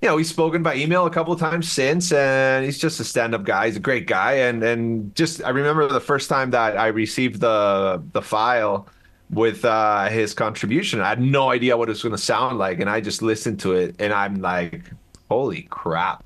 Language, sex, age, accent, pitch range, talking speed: English, male, 30-49, American, 120-175 Hz, 225 wpm